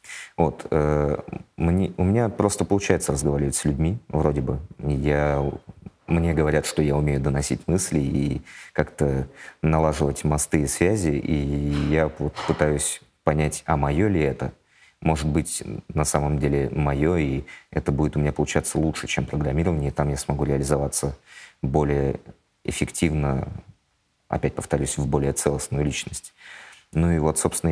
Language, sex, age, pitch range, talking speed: Russian, male, 30-49, 70-80 Hz, 145 wpm